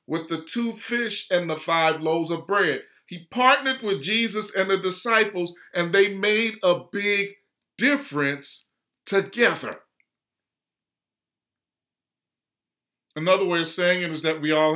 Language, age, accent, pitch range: English, 40-59, American, 155-200 Hz